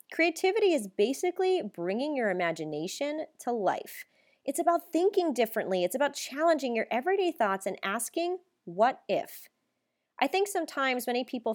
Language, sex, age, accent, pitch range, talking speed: English, female, 30-49, American, 180-250 Hz, 140 wpm